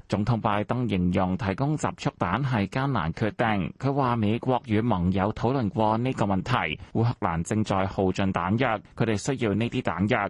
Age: 20-39